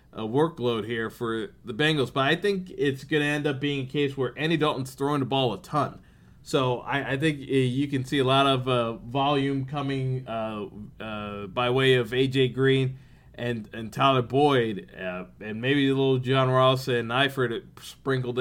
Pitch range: 115-140 Hz